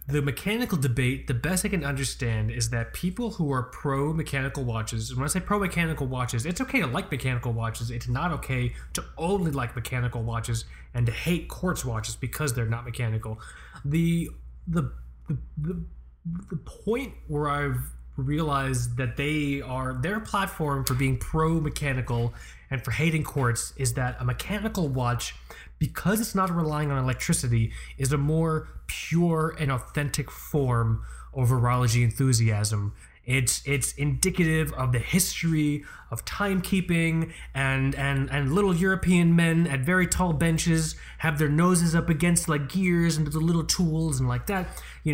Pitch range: 120-165 Hz